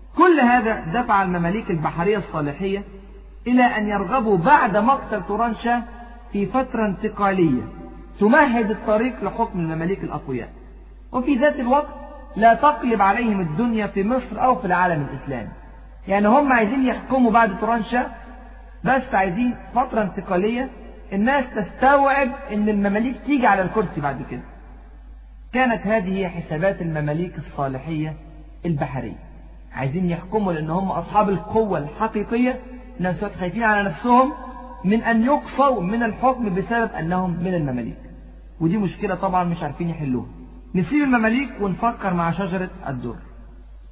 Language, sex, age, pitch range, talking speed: Arabic, male, 40-59, 160-235 Hz, 125 wpm